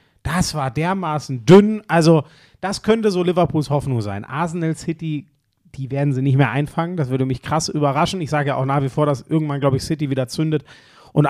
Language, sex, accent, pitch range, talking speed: German, male, German, 145-185 Hz, 205 wpm